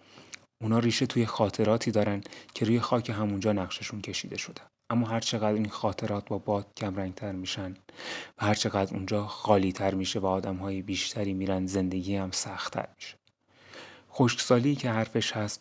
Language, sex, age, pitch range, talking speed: Persian, male, 30-49, 100-110 Hz, 145 wpm